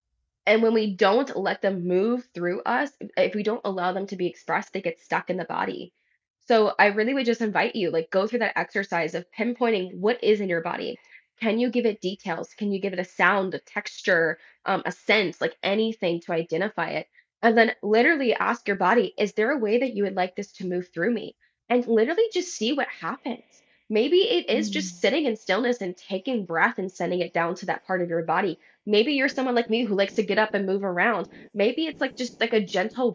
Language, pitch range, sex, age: English, 185-240 Hz, female, 10-29